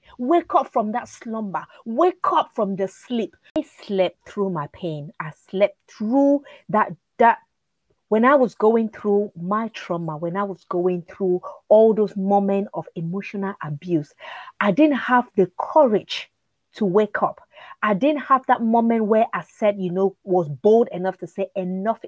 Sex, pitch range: female, 195-280 Hz